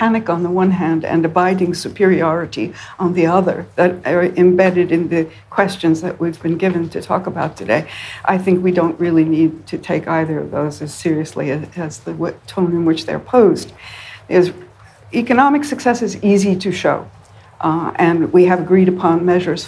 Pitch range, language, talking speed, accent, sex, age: 160-185 Hz, English, 180 wpm, American, female, 60-79